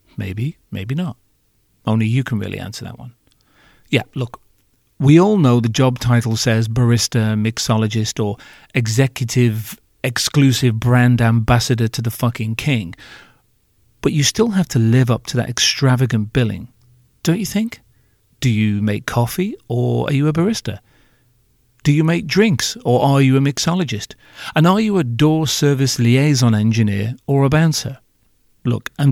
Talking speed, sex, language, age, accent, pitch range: 155 wpm, male, English, 40-59, British, 115-140 Hz